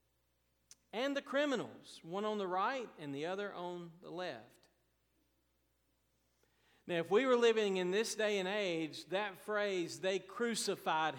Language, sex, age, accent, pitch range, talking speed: English, male, 50-69, American, 145-200 Hz, 145 wpm